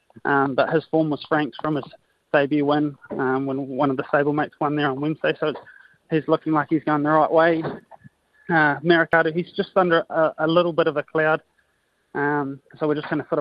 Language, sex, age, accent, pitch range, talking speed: English, male, 20-39, Australian, 145-160 Hz, 225 wpm